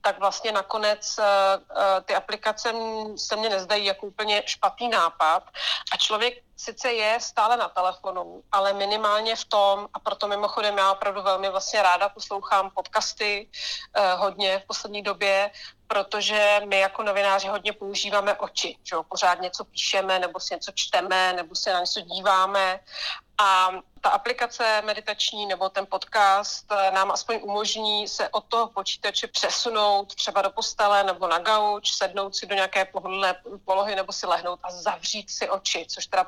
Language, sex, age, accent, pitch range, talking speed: Czech, female, 30-49, native, 190-215 Hz, 155 wpm